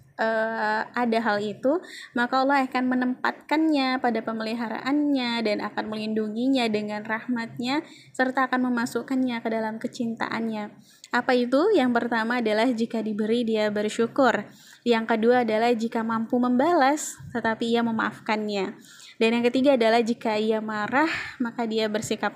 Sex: female